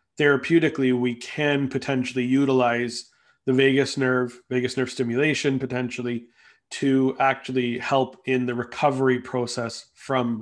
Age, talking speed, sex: 30-49, 115 wpm, male